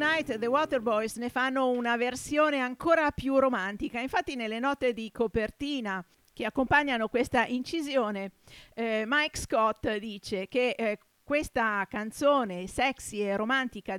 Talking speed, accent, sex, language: 135 wpm, native, female, Italian